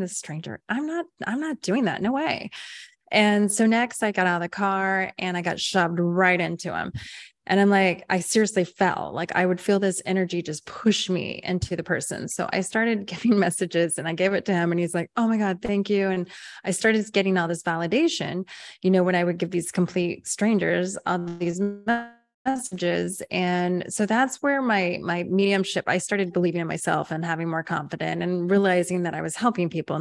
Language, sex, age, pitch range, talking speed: English, female, 20-39, 175-205 Hz, 210 wpm